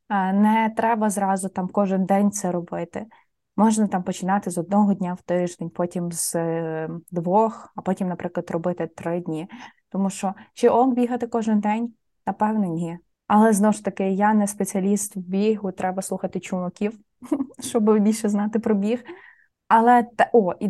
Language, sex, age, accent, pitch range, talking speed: Ukrainian, female, 20-39, native, 190-225 Hz, 155 wpm